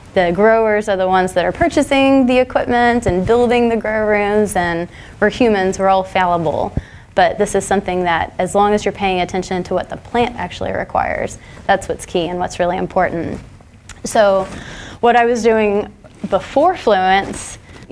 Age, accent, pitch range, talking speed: 20-39, American, 180-205 Hz, 175 wpm